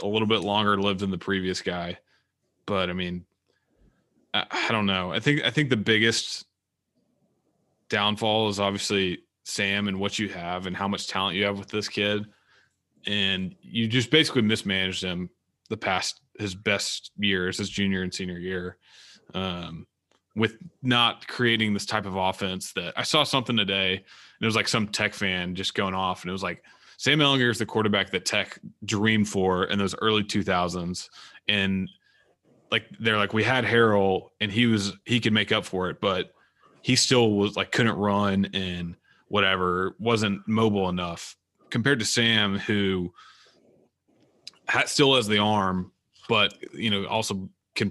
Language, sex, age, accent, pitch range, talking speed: English, male, 20-39, American, 95-110 Hz, 170 wpm